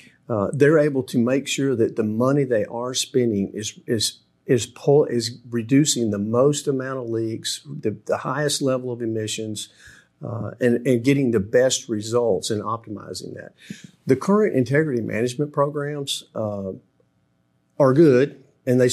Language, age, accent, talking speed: English, 50-69, American, 155 wpm